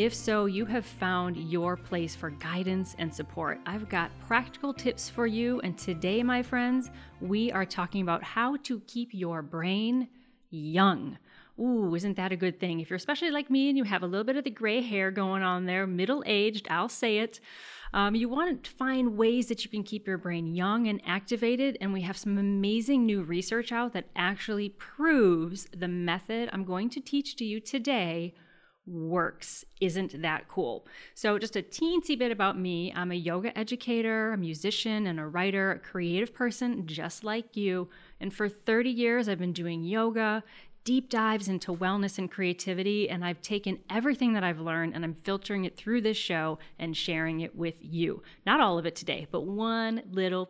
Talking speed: 190 wpm